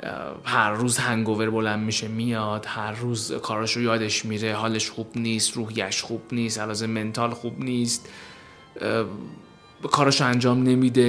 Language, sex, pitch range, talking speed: Persian, male, 110-145 Hz, 145 wpm